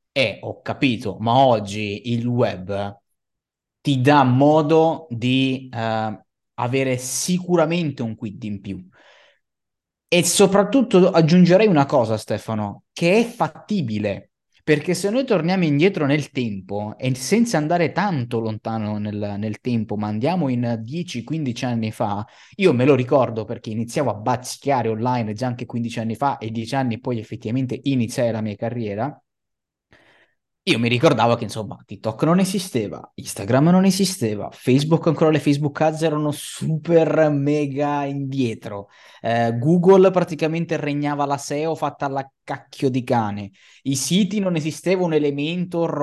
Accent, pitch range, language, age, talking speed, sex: native, 115-170 Hz, Italian, 20-39, 140 wpm, male